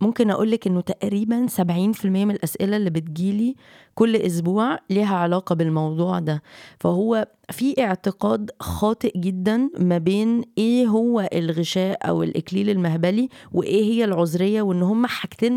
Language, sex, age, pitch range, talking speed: Arabic, female, 20-39, 180-230 Hz, 140 wpm